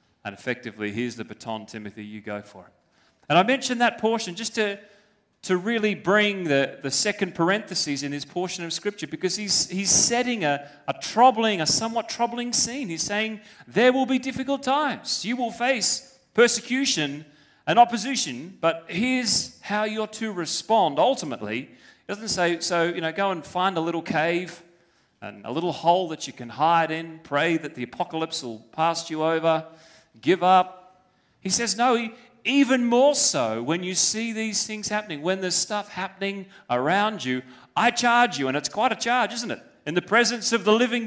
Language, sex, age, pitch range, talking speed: English, male, 30-49, 165-240 Hz, 185 wpm